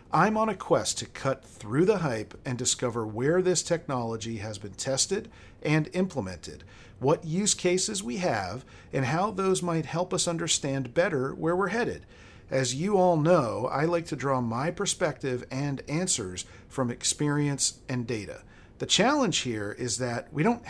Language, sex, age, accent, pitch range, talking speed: English, male, 40-59, American, 115-160 Hz, 170 wpm